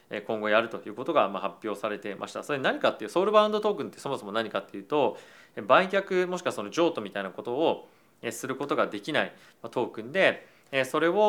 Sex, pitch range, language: male, 110-150 Hz, Japanese